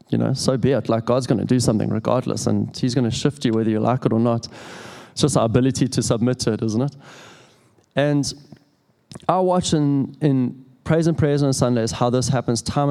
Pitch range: 120-145 Hz